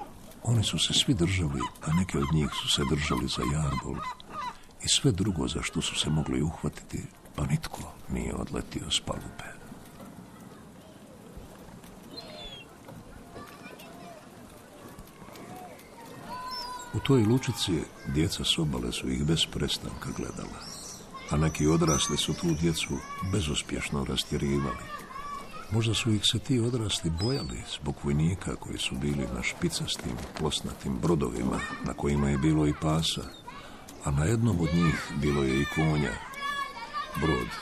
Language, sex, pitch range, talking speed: Croatian, male, 70-105 Hz, 125 wpm